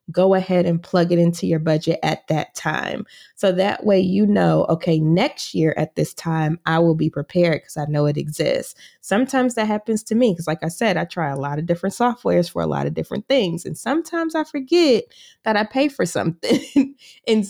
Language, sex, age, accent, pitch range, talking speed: English, female, 20-39, American, 165-210 Hz, 215 wpm